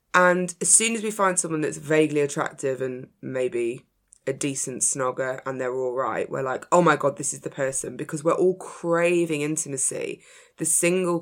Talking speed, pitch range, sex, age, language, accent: 185 wpm, 140-180 Hz, female, 20-39, English, British